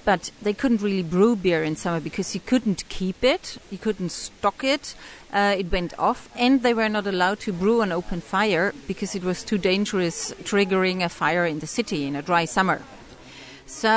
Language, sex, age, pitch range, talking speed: English, female, 40-59, 185-245 Hz, 200 wpm